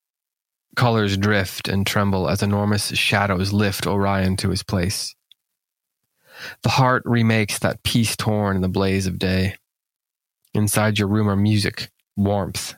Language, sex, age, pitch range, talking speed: English, male, 20-39, 95-110 Hz, 135 wpm